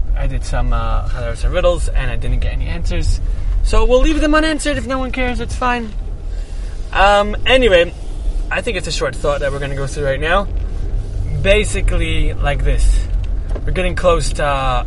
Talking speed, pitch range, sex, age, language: 190 wpm, 85-130 Hz, male, 20-39, English